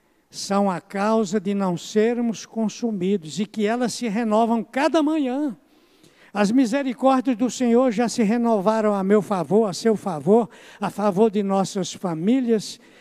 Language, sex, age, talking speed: Portuguese, male, 60-79, 150 wpm